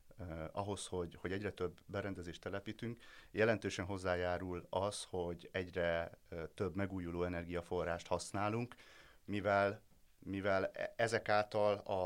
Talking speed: 105 wpm